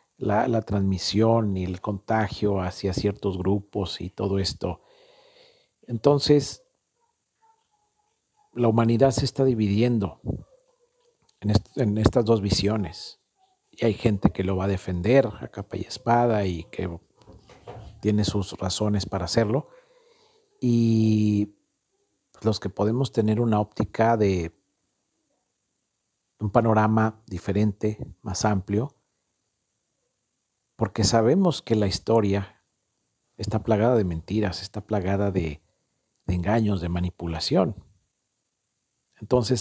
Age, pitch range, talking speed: 50-69, 100-125 Hz, 110 wpm